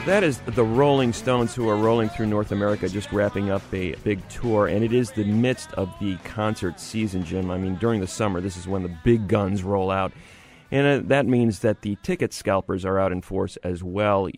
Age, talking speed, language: 30-49, 225 wpm, English